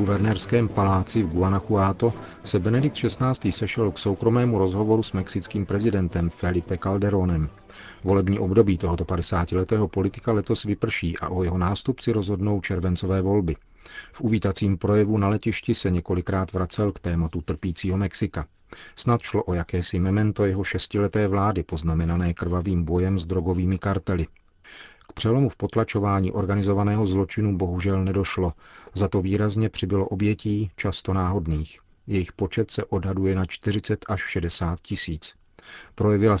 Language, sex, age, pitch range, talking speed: Czech, male, 40-59, 90-105 Hz, 135 wpm